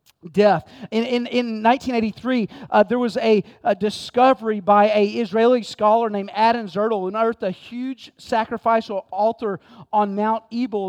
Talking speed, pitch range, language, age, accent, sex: 150 wpm, 200-240 Hz, English, 40-59, American, male